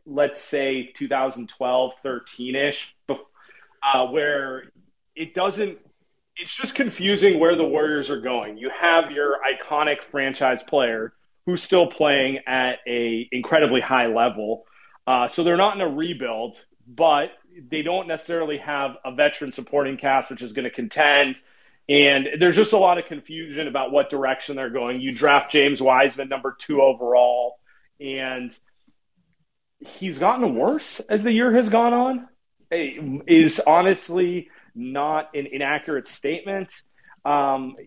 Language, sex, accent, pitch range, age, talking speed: English, male, American, 130-165 Hz, 30-49, 140 wpm